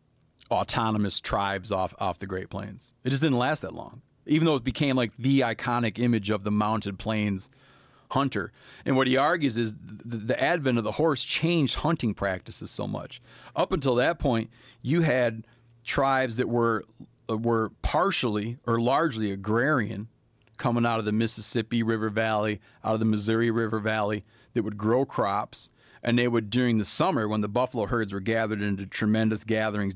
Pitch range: 110-130 Hz